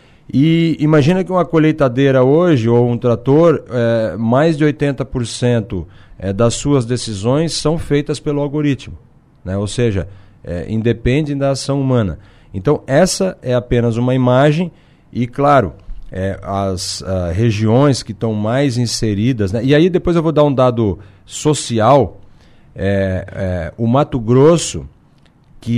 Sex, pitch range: male, 110-140 Hz